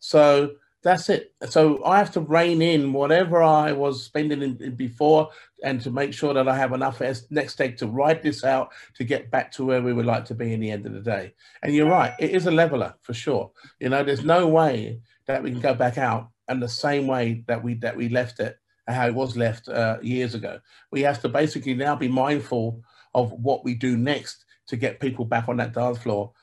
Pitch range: 120-155 Hz